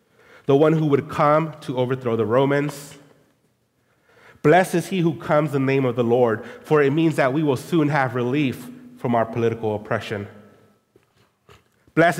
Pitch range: 115-140 Hz